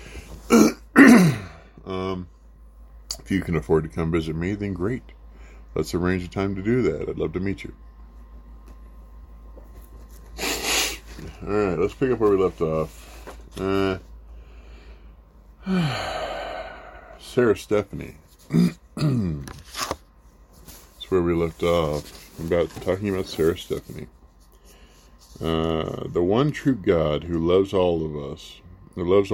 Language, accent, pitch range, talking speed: English, American, 70-95 Hz, 110 wpm